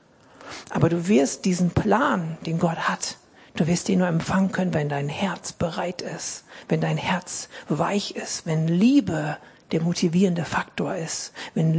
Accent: German